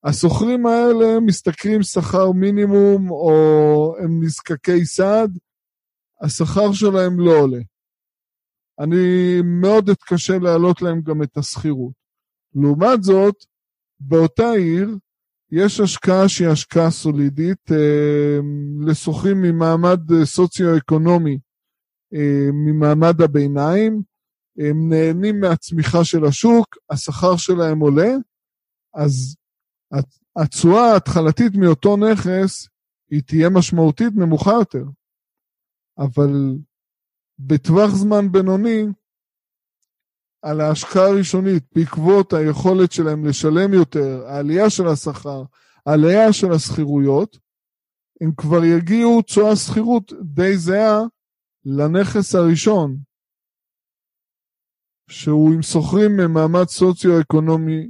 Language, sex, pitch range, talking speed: Hebrew, male, 150-195 Hz, 85 wpm